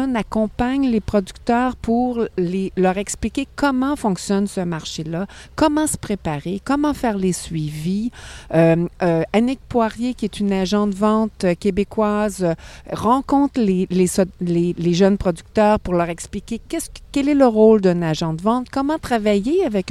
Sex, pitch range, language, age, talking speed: female, 180-240 Hz, French, 50-69, 150 wpm